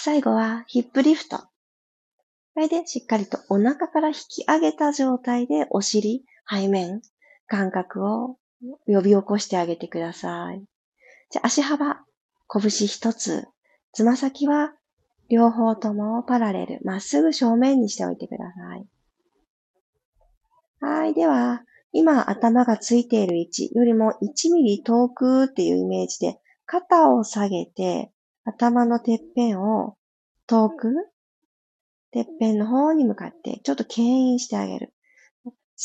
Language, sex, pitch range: Japanese, female, 205-290 Hz